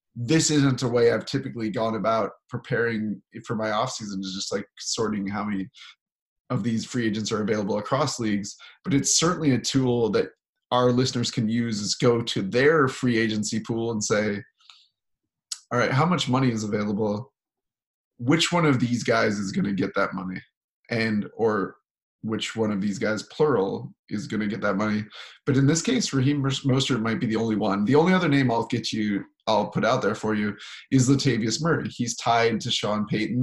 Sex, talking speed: male, 195 wpm